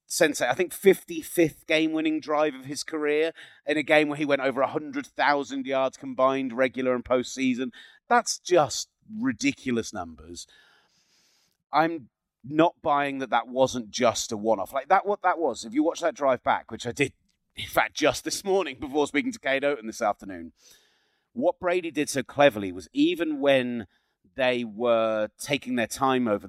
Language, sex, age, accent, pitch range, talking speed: English, male, 30-49, British, 125-170 Hz, 180 wpm